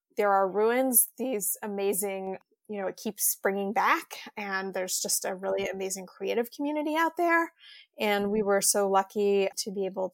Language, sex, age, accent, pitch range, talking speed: English, female, 20-39, American, 185-210 Hz, 170 wpm